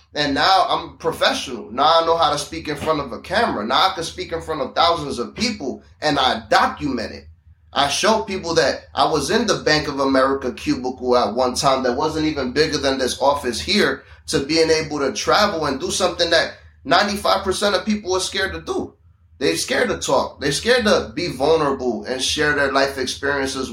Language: English